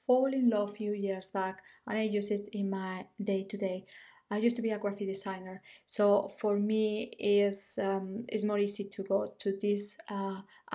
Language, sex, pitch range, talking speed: English, female, 195-225 Hz, 190 wpm